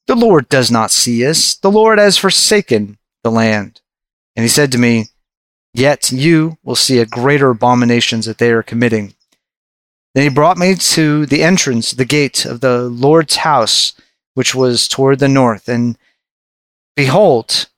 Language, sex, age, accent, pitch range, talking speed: English, male, 30-49, American, 120-150 Hz, 160 wpm